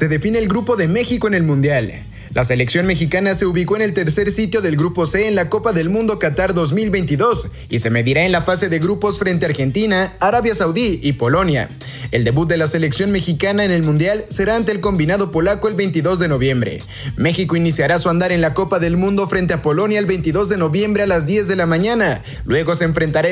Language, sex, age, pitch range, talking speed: Spanish, male, 30-49, 155-200 Hz, 220 wpm